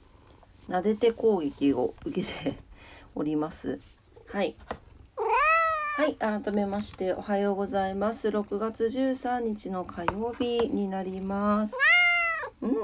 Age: 40-59